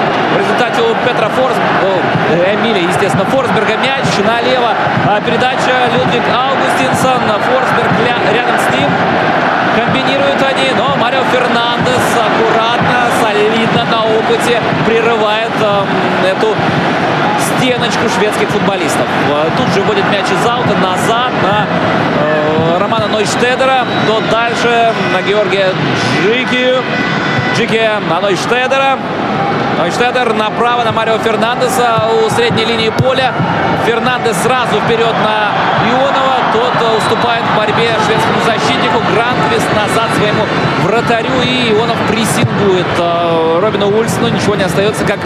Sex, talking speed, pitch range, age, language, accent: male, 115 wpm, 185-225 Hz, 20-39, Russian, native